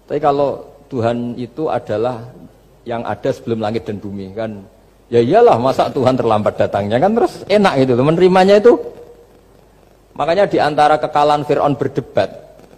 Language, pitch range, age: Indonesian, 125-185 Hz, 50-69